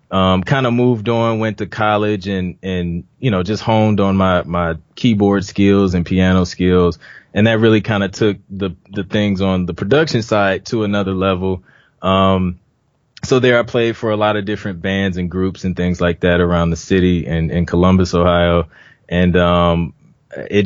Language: English